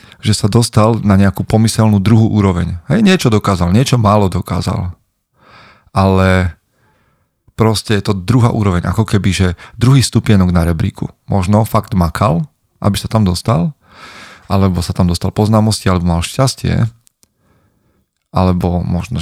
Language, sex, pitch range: Slovak, male, 90-110 Hz